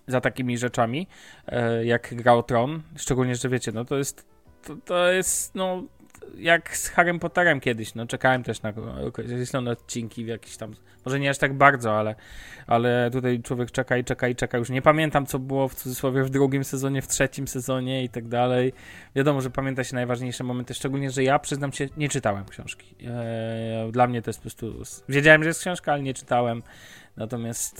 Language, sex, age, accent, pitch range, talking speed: Polish, male, 20-39, native, 115-140 Hz, 190 wpm